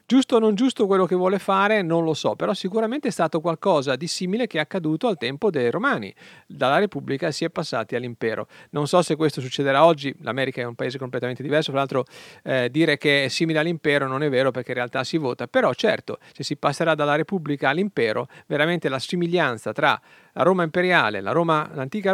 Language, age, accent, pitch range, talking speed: English, 40-59, Italian, 140-190 Hz, 200 wpm